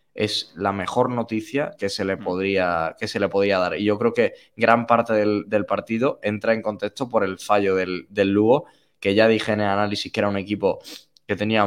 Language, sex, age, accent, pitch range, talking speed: Spanish, male, 10-29, Spanish, 95-110 Hz, 220 wpm